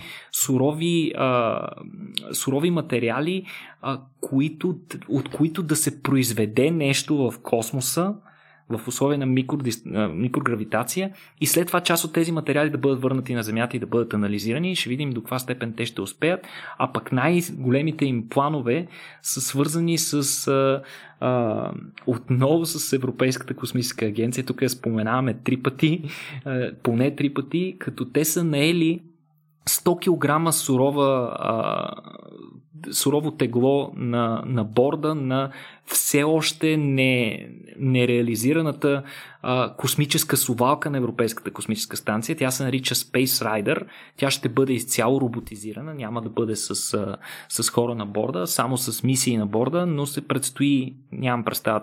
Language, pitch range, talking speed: Bulgarian, 120-150 Hz, 135 wpm